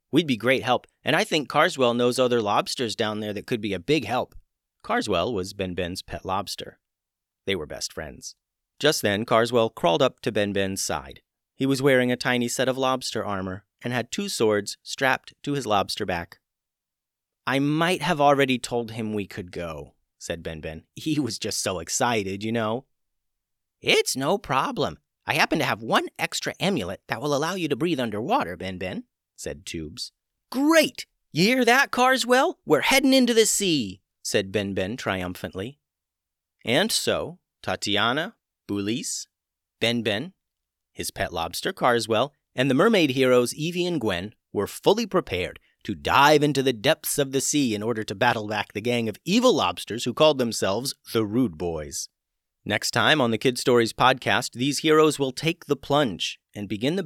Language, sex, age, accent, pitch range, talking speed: English, male, 30-49, American, 100-145 Hz, 170 wpm